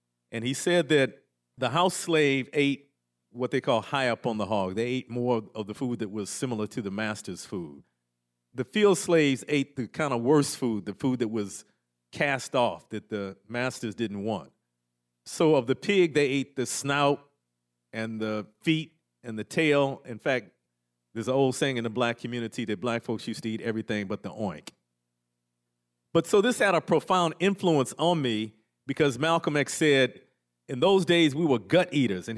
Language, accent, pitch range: English, American, 105-150 Hz